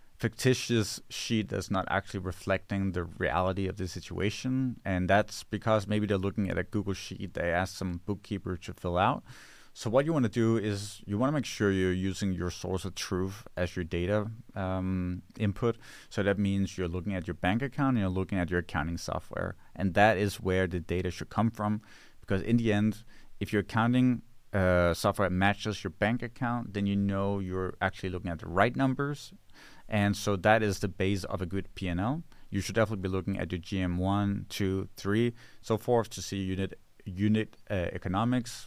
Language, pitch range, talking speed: English, 90-105 Hz, 195 wpm